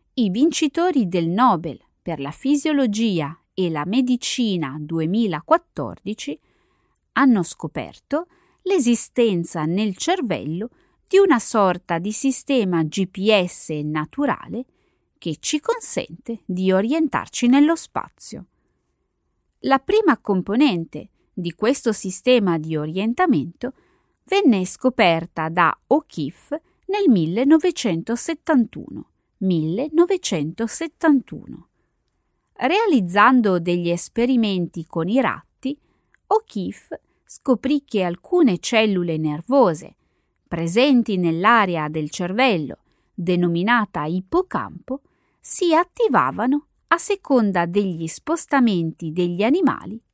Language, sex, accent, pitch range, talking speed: Italian, female, native, 175-280 Hz, 85 wpm